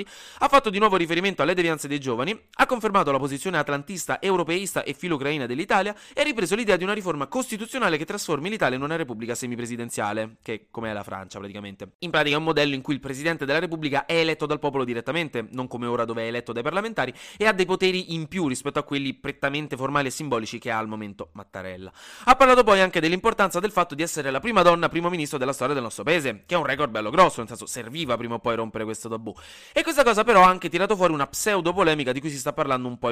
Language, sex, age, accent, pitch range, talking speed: Italian, male, 20-39, native, 125-185 Hz, 245 wpm